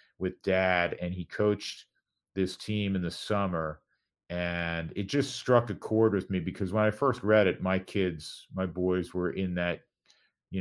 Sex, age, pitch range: male, 40-59, 80-95 Hz